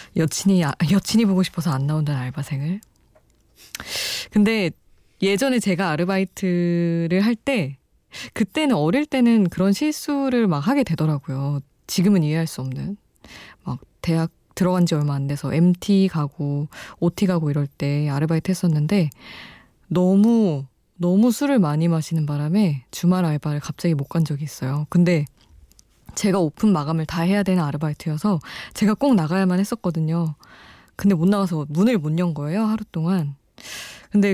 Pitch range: 155-195 Hz